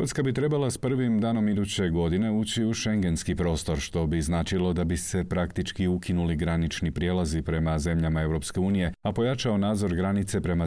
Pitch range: 80-95 Hz